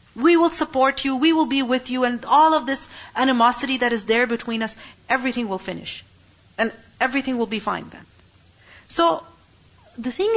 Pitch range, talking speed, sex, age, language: 220-275 Hz, 180 wpm, female, 40-59, English